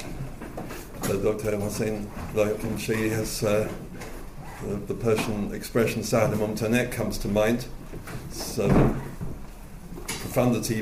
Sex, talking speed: male, 110 wpm